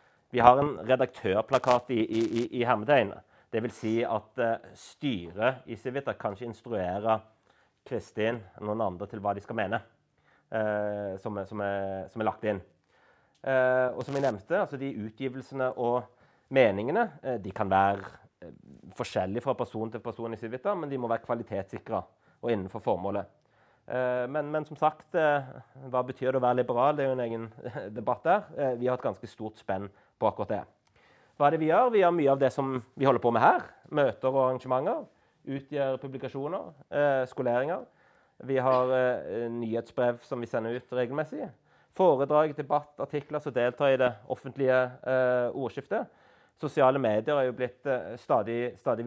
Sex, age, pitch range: male, 30-49, 115-135 Hz